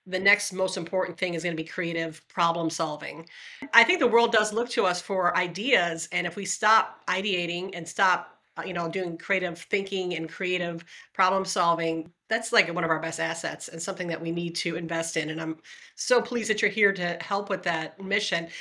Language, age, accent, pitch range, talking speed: English, 40-59, American, 170-200 Hz, 210 wpm